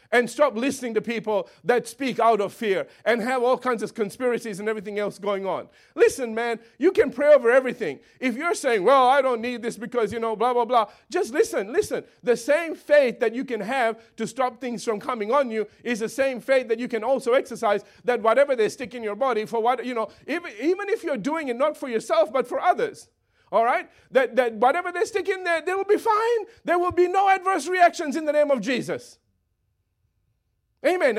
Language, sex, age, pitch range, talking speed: English, male, 50-69, 225-295 Hz, 225 wpm